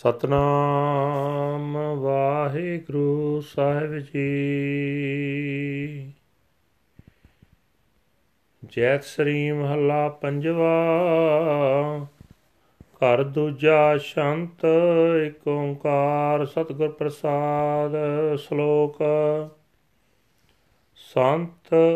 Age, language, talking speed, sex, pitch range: 40-59, Punjabi, 50 wpm, male, 145-165 Hz